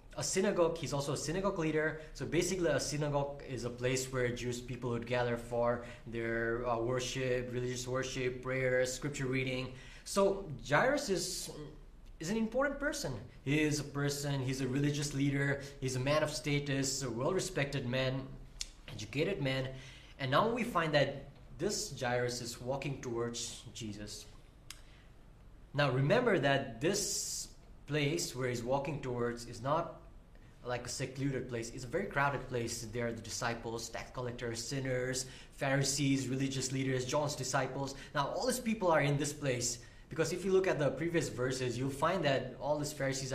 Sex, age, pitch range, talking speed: male, 20-39, 120-145 Hz, 165 wpm